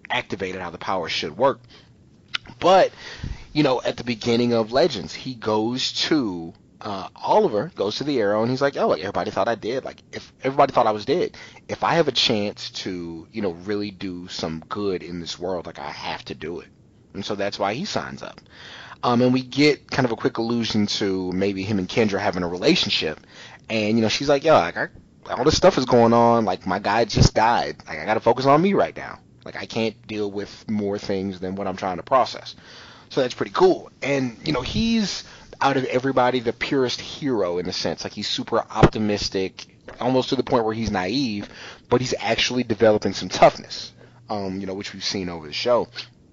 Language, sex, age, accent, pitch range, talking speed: English, male, 30-49, American, 95-125 Hz, 215 wpm